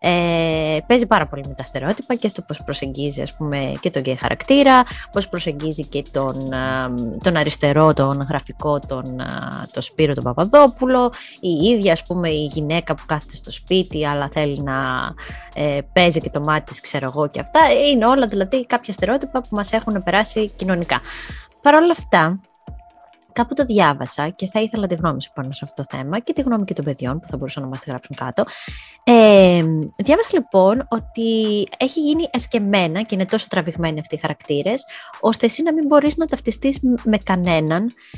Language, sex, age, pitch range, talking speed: Greek, female, 20-39, 150-225 Hz, 185 wpm